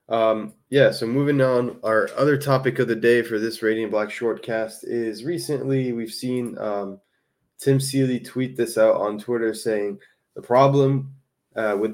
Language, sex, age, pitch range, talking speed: English, male, 20-39, 105-130 Hz, 165 wpm